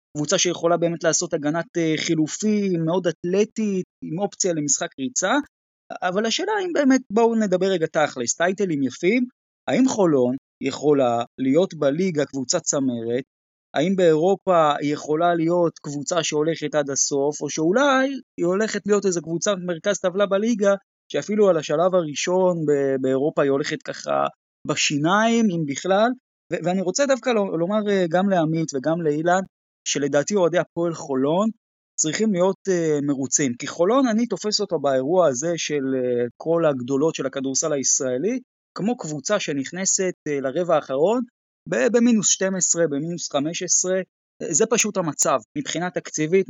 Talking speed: 140 wpm